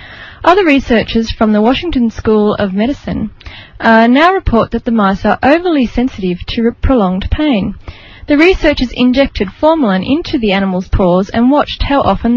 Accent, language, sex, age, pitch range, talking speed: Australian, English, female, 30-49, 195-255 Hz, 155 wpm